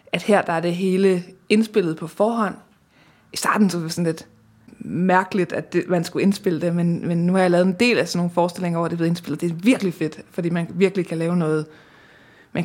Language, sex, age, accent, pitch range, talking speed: Danish, female, 20-39, native, 170-205 Hz, 235 wpm